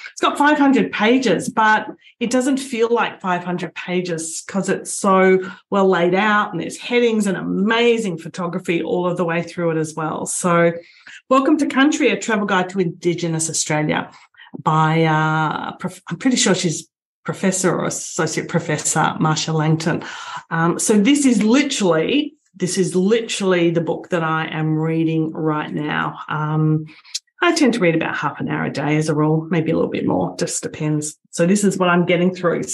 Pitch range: 165-215 Hz